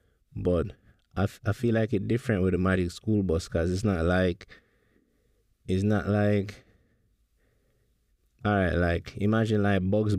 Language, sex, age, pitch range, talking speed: English, male, 20-39, 85-105 Hz, 145 wpm